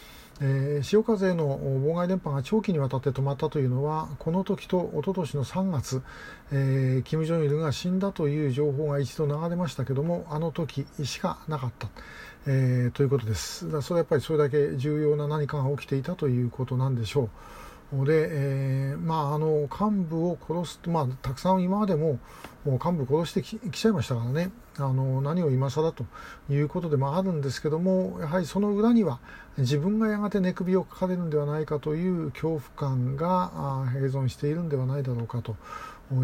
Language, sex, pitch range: Japanese, male, 130-165 Hz